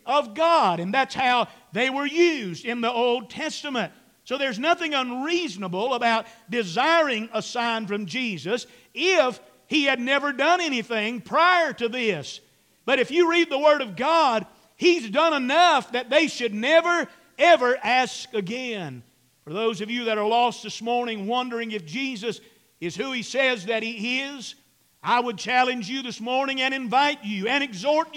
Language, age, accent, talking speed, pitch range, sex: English, 50-69, American, 170 wpm, 210-270 Hz, male